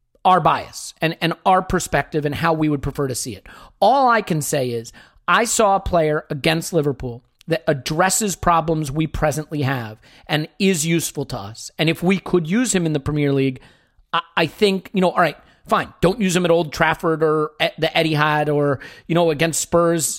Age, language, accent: 40-59, English, American